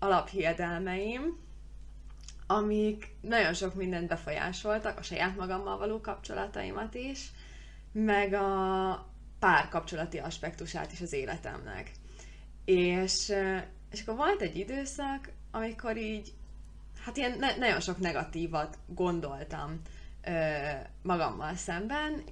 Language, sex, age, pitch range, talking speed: Hungarian, female, 20-39, 165-205 Hz, 95 wpm